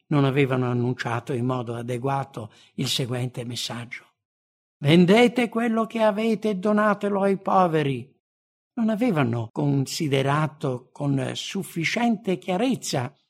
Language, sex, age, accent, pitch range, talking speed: English, male, 60-79, Italian, 130-205 Hz, 105 wpm